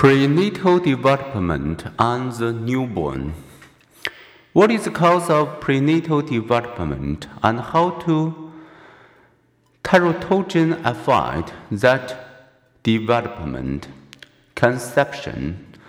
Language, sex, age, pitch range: Chinese, male, 50-69, 125-160 Hz